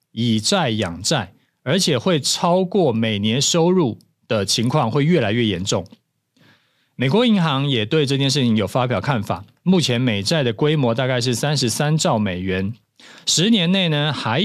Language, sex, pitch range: Chinese, male, 115-160 Hz